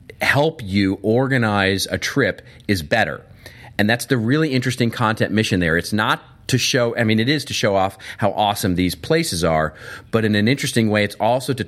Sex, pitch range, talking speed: male, 90-115 Hz, 200 wpm